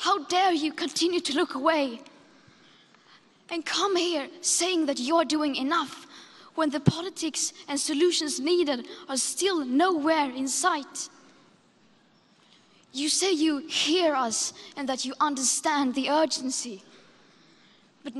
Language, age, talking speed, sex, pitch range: Italian, 10-29, 125 wpm, female, 275-330 Hz